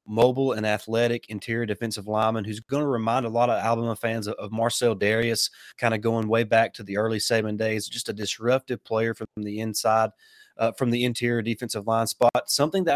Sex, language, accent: male, English, American